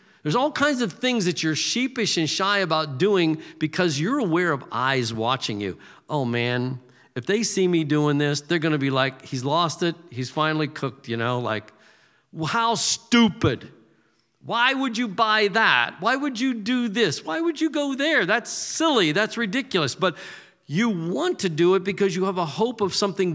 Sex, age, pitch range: male, 50-69, 150-195 Hz